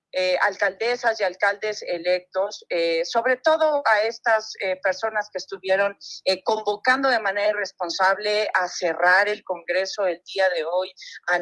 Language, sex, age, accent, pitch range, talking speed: Spanish, female, 40-59, Mexican, 195-265 Hz, 145 wpm